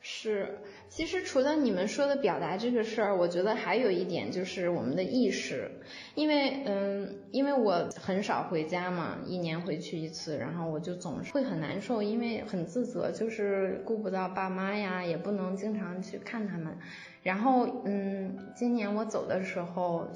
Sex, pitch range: female, 185-245 Hz